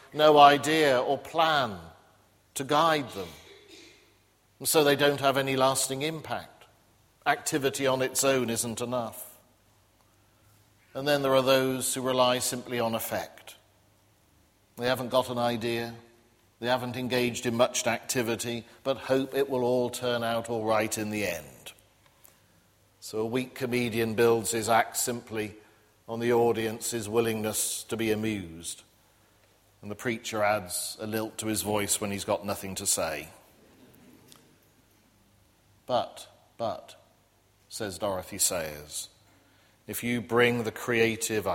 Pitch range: 105-125 Hz